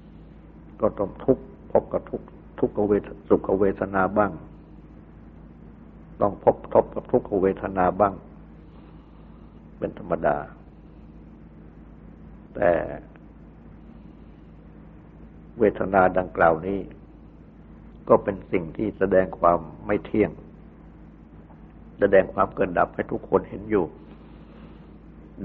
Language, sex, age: Thai, male, 60-79